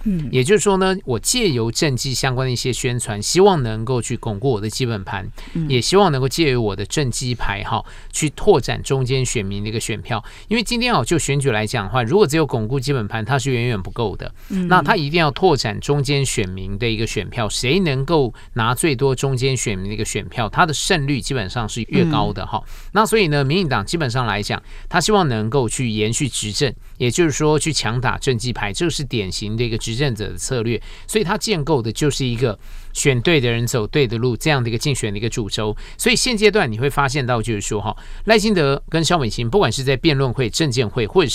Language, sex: Chinese, male